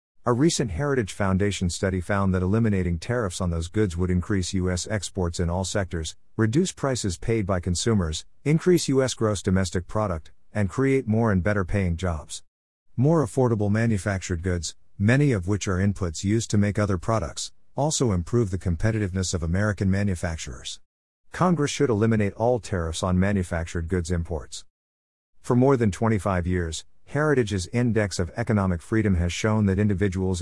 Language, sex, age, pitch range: English, male, 50-69, 90-110 Hz